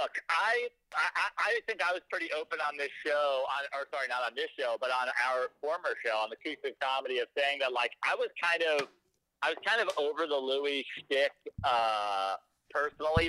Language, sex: English, male